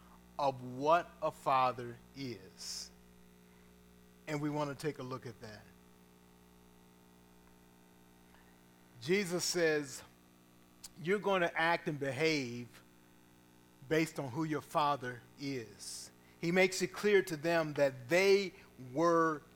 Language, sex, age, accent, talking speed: English, male, 40-59, American, 115 wpm